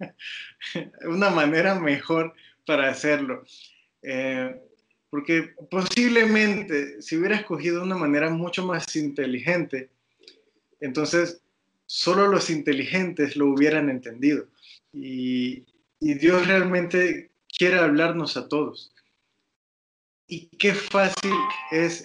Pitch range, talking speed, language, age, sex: 145-180 Hz, 95 wpm, Spanish, 20-39, male